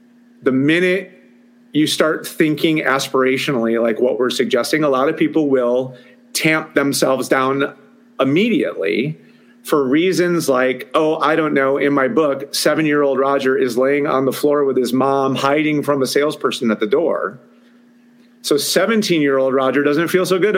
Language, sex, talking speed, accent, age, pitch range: English, male, 155 wpm, American, 40-59, 135-225 Hz